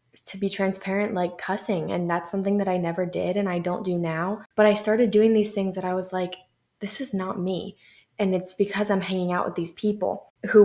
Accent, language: American, English